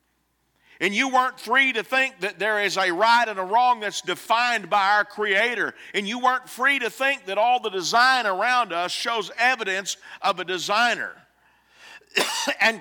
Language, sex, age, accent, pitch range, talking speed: English, male, 50-69, American, 190-245 Hz, 175 wpm